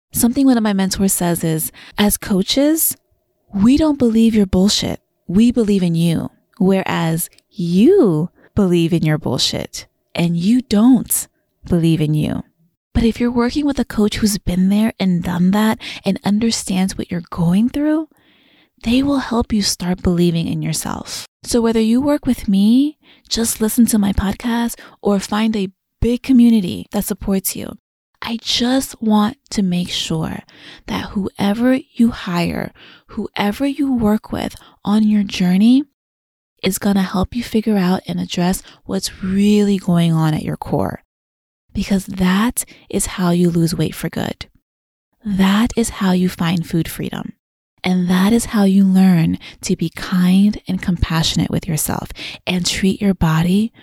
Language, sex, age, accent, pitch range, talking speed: English, female, 20-39, American, 180-230 Hz, 155 wpm